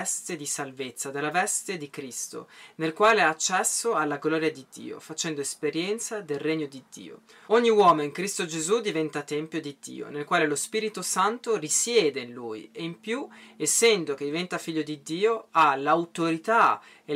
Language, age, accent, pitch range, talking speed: Italian, 20-39, native, 145-200 Hz, 170 wpm